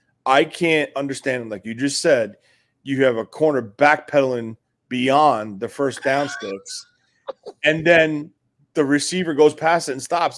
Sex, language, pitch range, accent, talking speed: male, English, 125-155 Hz, American, 150 wpm